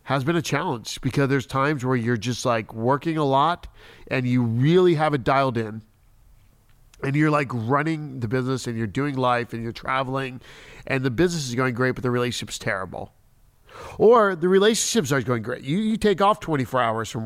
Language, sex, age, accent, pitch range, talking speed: English, male, 40-59, American, 120-160 Hz, 200 wpm